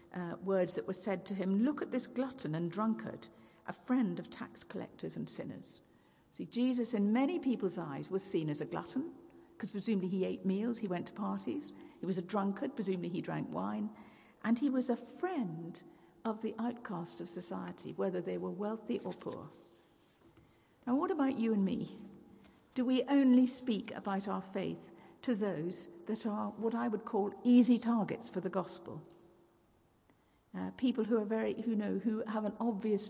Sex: female